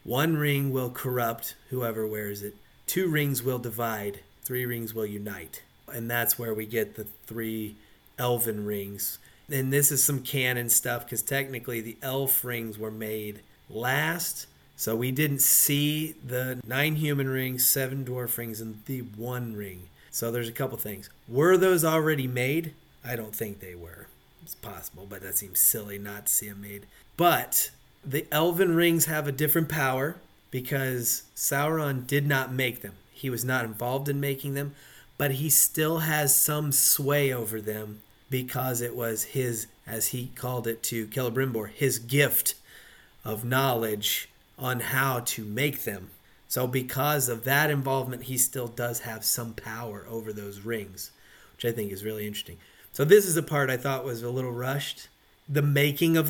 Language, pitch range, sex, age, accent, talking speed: English, 110-140 Hz, male, 30-49, American, 170 wpm